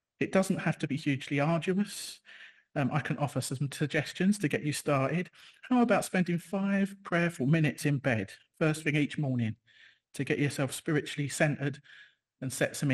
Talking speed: 170 wpm